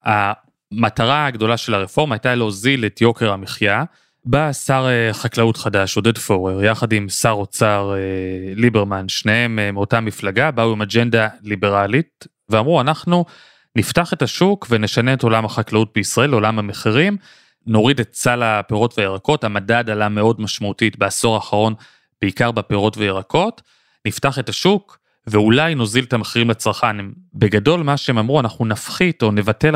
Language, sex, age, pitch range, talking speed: Hebrew, male, 30-49, 105-135 Hz, 140 wpm